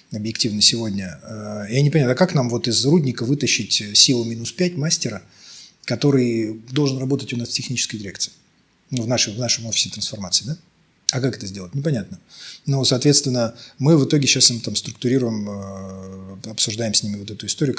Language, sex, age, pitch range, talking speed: Russian, male, 30-49, 110-135 Hz, 170 wpm